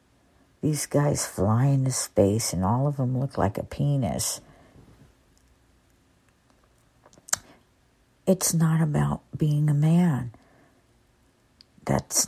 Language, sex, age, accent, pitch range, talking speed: English, female, 60-79, American, 120-150 Hz, 100 wpm